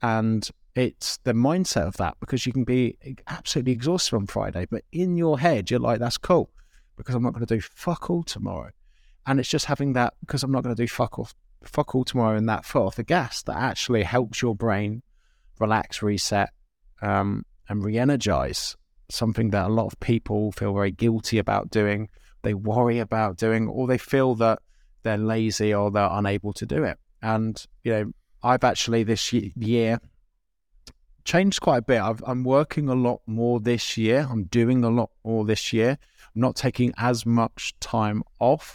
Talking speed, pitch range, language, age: 185 wpm, 105-125 Hz, English, 20-39